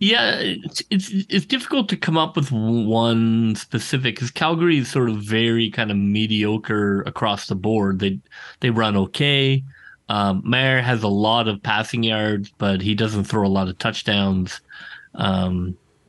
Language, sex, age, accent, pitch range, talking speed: English, male, 30-49, American, 100-115 Hz, 165 wpm